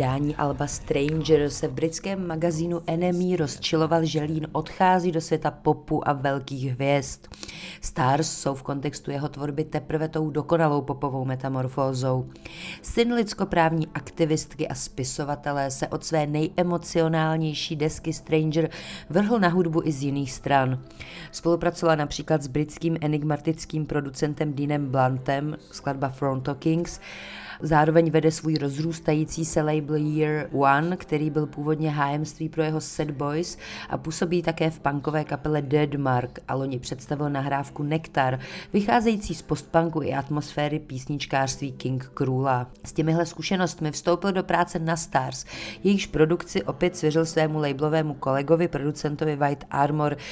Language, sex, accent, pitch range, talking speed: Czech, female, native, 140-165 Hz, 130 wpm